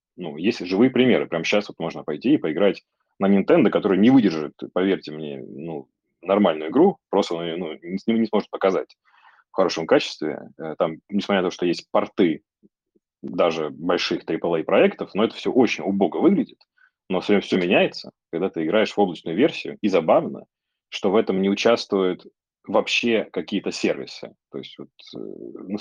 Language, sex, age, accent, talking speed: Russian, male, 30-49, native, 170 wpm